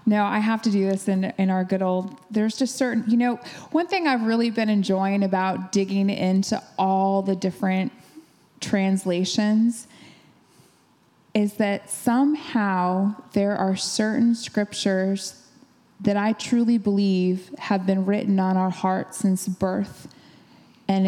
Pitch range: 190-225 Hz